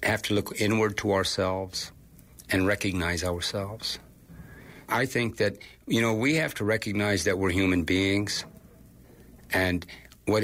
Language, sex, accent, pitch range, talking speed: English, male, American, 95-105 Hz, 140 wpm